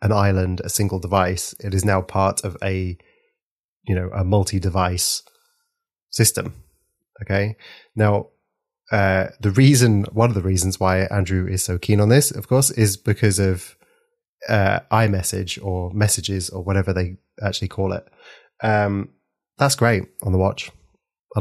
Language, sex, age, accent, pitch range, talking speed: English, male, 30-49, British, 95-115 Hz, 150 wpm